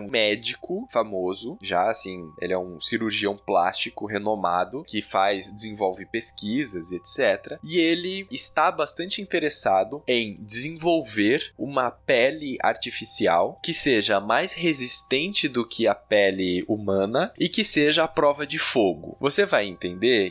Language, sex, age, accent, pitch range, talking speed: Portuguese, male, 20-39, Brazilian, 100-165 Hz, 130 wpm